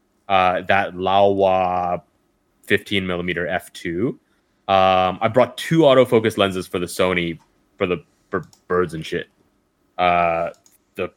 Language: English